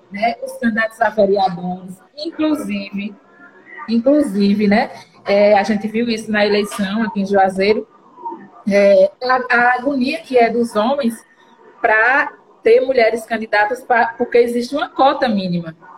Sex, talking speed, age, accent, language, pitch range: female, 130 wpm, 20-39, Brazilian, Portuguese, 215-275 Hz